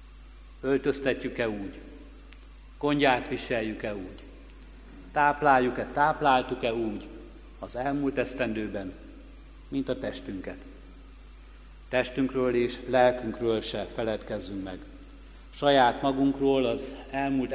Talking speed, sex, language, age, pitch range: 80 wpm, male, Hungarian, 60-79, 115-135 Hz